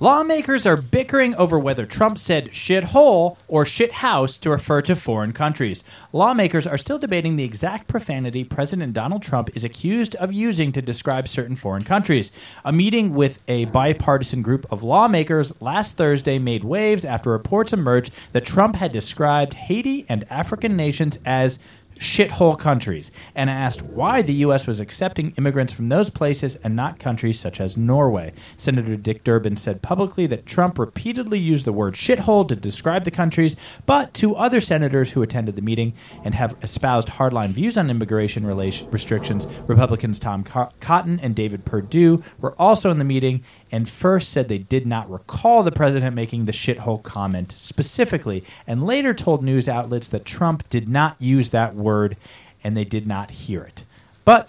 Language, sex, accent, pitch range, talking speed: English, male, American, 115-180 Hz, 170 wpm